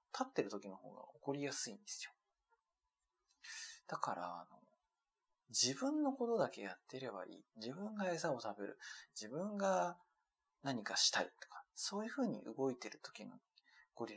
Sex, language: male, Japanese